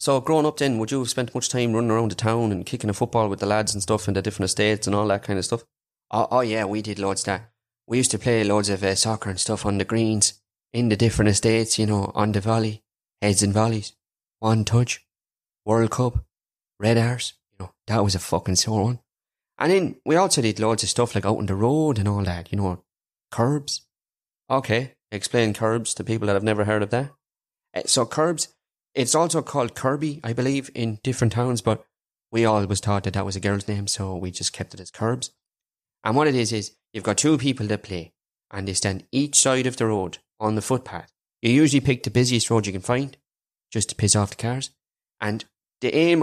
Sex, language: male, English